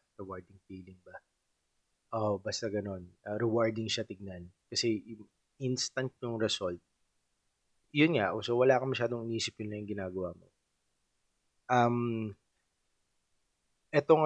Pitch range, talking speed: 100-120 Hz, 120 wpm